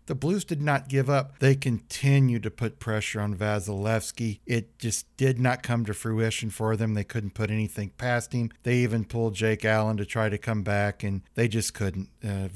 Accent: American